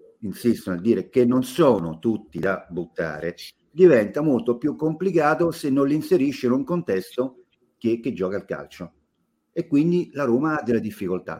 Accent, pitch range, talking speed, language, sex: native, 80-125 Hz, 170 wpm, Italian, male